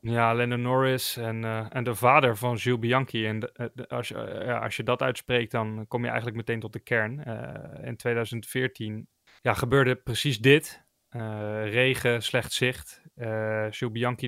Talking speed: 180 wpm